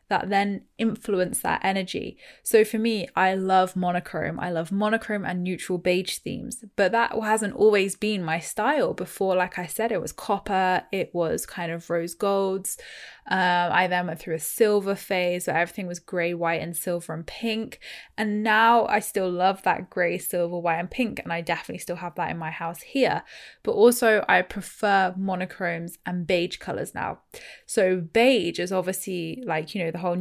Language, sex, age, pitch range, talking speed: English, female, 10-29, 175-210 Hz, 185 wpm